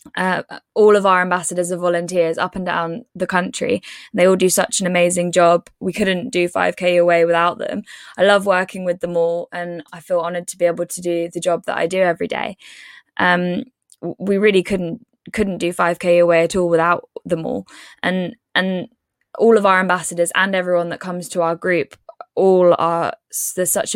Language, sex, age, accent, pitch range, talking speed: English, female, 10-29, British, 175-205 Hz, 195 wpm